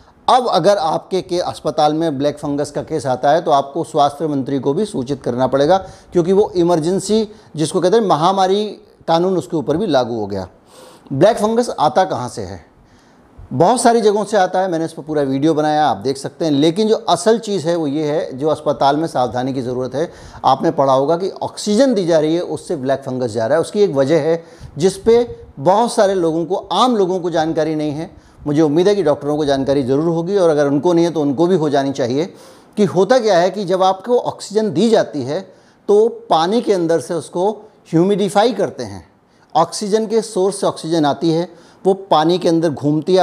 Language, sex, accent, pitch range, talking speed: Hindi, male, native, 145-195 Hz, 215 wpm